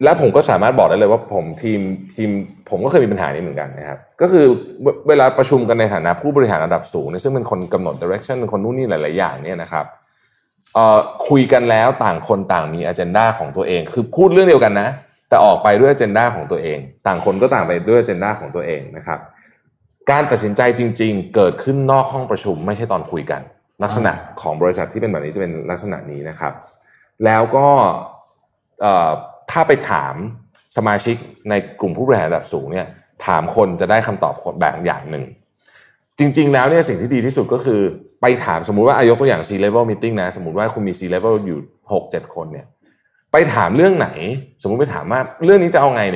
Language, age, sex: Thai, 20-39, male